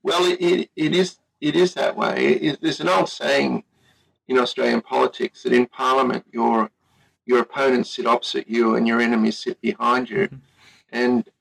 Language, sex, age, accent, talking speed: English, male, 50-69, Australian, 180 wpm